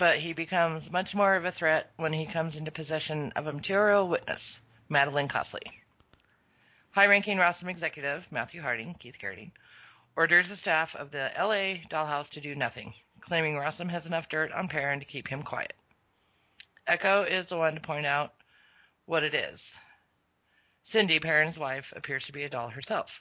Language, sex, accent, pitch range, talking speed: English, female, American, 145-170 Hz, 170 wpm